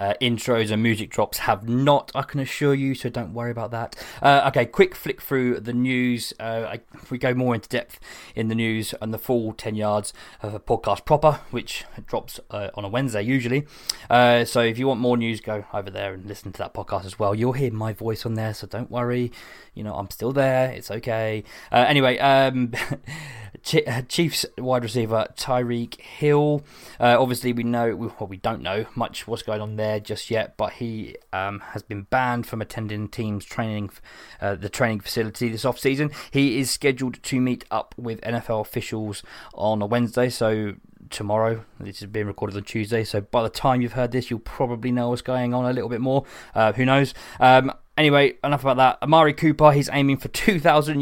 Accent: British